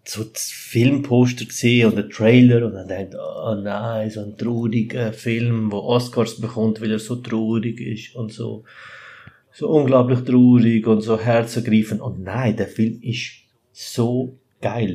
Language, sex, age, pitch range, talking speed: German, male, 30-49, 105-125 Hz, 155 wpm